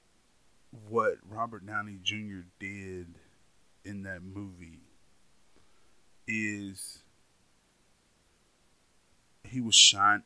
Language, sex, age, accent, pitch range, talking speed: English, male, 30-49, American, 90-105 Hz, 75 wpm